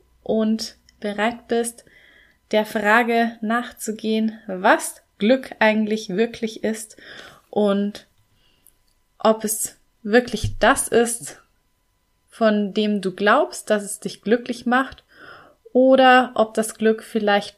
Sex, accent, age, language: female, German, 20-39, German